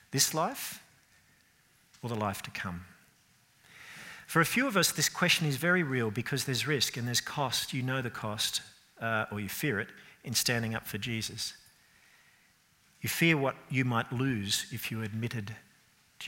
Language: English